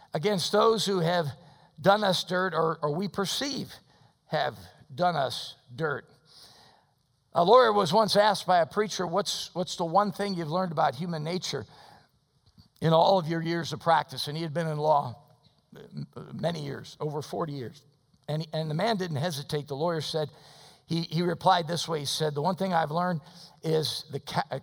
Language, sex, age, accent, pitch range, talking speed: English, male, 50-69, American, 145-180 Hz, 185 wpm